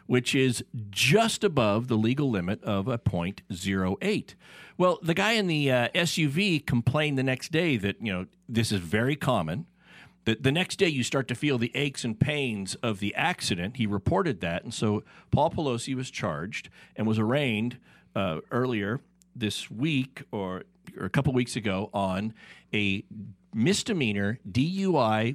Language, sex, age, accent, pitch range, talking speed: English, male, 50-69, American, 115-155 Hz, 165 wpm